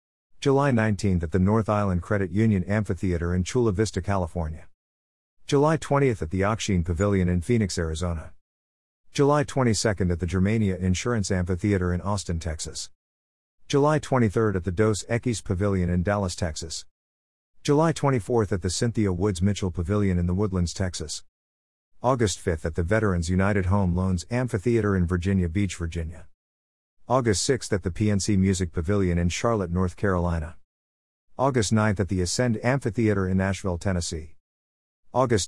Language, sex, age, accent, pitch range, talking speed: English, male, 50-69, American, 85-105 Hz, 150 wpm